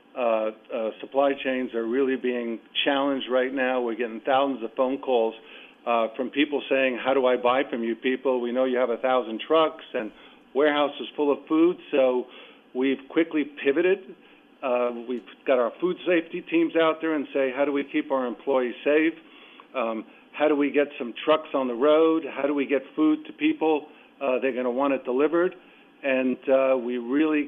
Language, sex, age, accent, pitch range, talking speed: English, male, 50-69, American, 125-145 Hz, 195 wpm